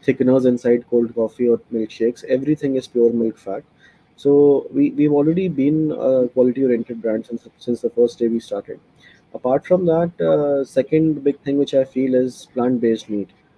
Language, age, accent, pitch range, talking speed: Hindi, 20-39, native, 115-135 Hz, 200 wpm